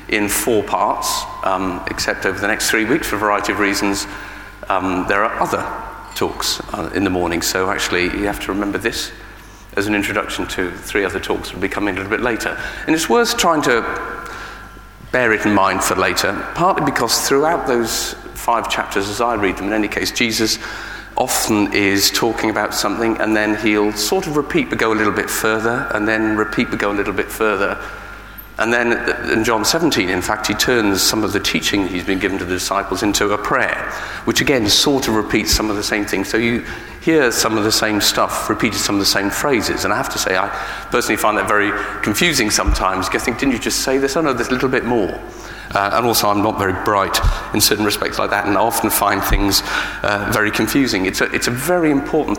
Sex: male